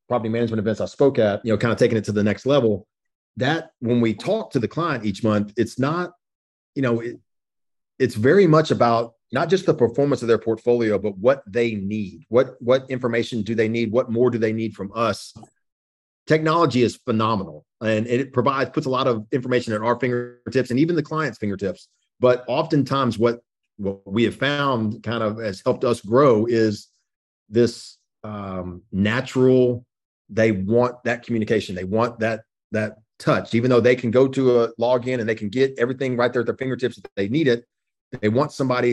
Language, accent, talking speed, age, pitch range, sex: English, American, 195 wpm, 30-49, 110-125 Hz, male